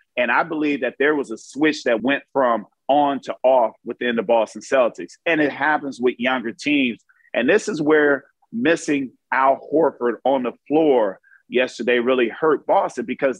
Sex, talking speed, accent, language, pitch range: male, 175 wpm, American, English, 130-185 Hz